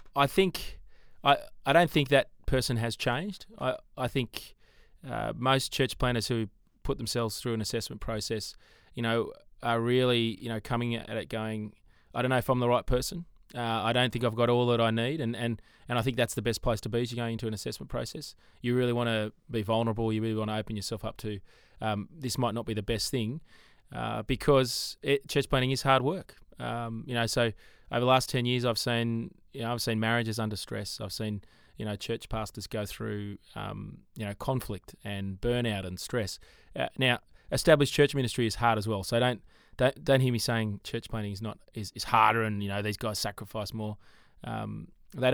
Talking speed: 220 wpm